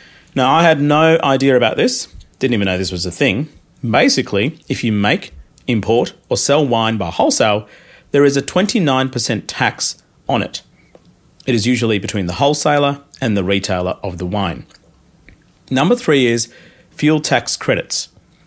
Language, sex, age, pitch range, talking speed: English, male, 40-59, 100-145 Hz, 160 wpm